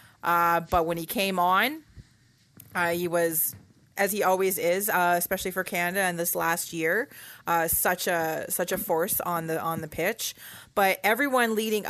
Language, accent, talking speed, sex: English, American, 175 wpm, female